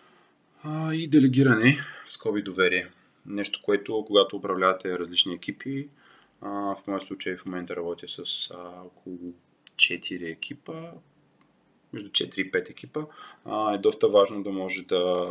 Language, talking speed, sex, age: Bulgarian, 130 wpm, male, 30-49